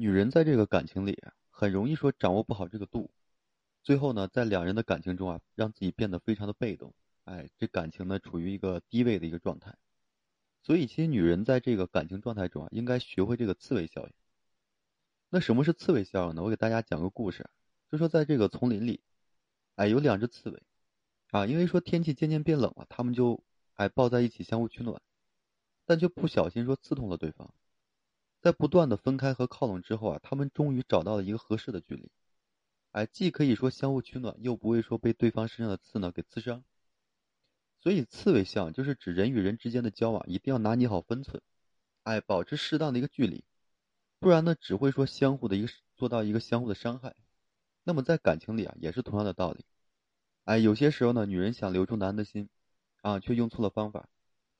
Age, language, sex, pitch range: 30-49, Chinese, male, 100-130 Hz